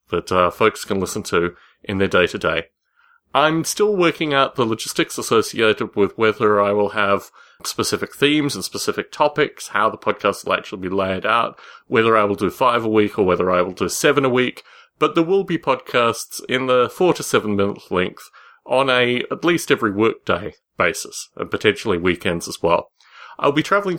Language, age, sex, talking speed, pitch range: English, 30-49, male, 190 wpm, 105-145 Hz